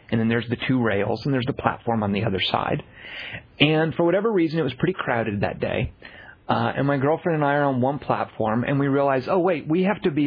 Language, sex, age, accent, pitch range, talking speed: English, male, 40-59, American, 130-180 Hz, 250 wpm